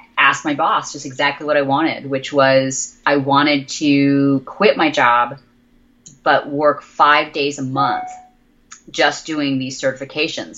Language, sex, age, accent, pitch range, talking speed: English, female, 30-49, American, 130-150 Hz, 145 wpm